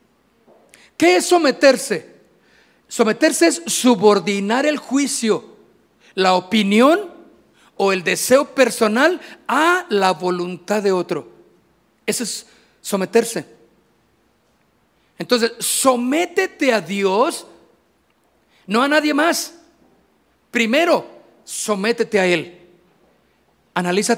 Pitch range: 190-275 Hz